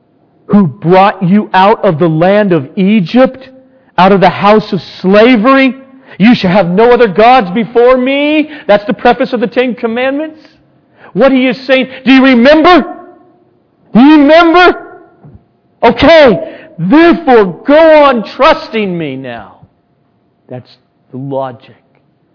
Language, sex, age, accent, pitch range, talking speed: English, male, 40-59, American, 185-255 Hz, 135 wpm